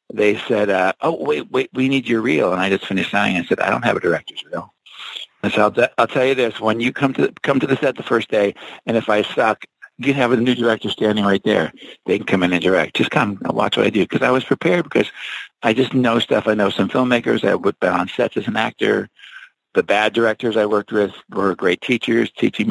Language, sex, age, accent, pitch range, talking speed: English, male, 60-79, American, 95-115 Hz, 260 wpm